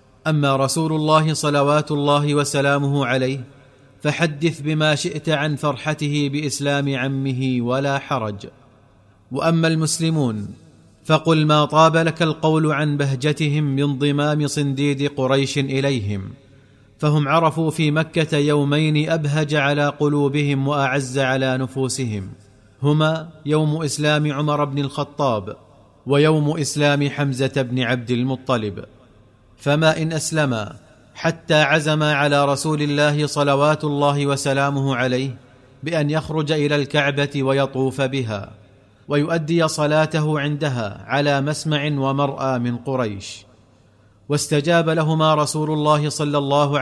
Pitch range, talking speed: 130-150 Hz, 110 wpm